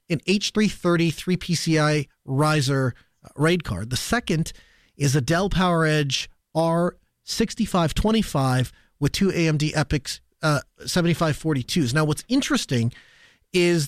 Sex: male